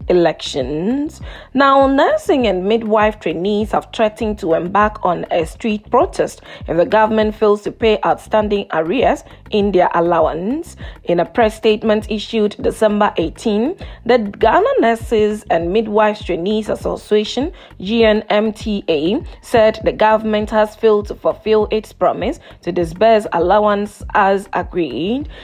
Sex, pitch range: female, 205-220 Hz